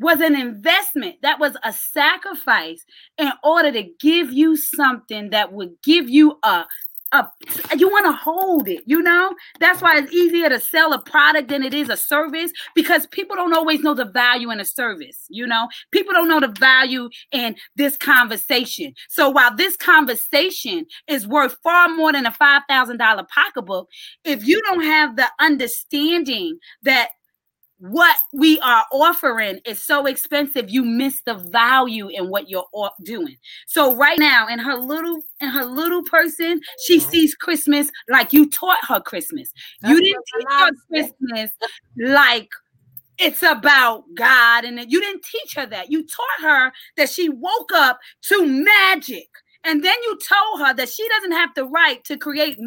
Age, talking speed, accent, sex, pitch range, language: 30-49, 165 wpm, American, female, 255-335 Hz, English